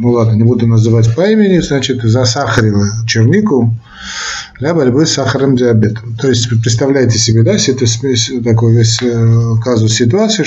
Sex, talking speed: male, 145 wpm